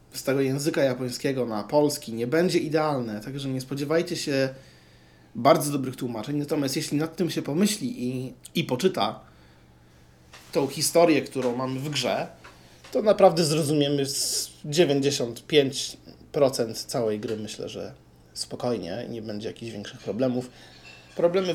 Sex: male